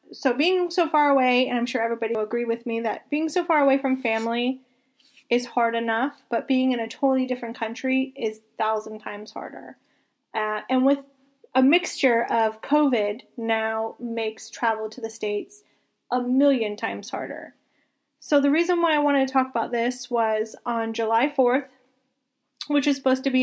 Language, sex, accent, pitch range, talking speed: English, female, American, 225-275 Hz, 180 wpm